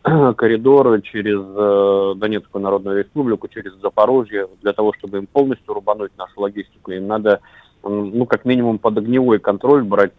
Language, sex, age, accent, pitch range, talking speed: Russian, male, 30-49, native, 100-120 Hz, 155 wpm